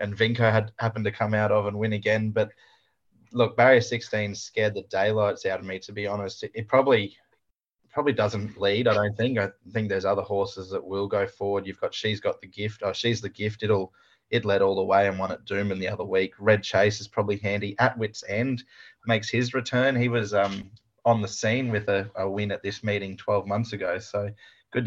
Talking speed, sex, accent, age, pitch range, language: 230 wpm, male, Australian, 20-39, 100-115 Hz, English